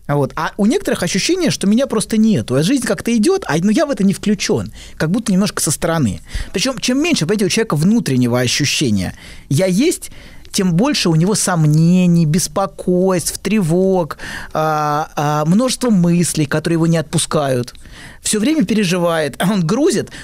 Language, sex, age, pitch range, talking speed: Russian, male, 20-39, 145-215 Hz, 165 wpm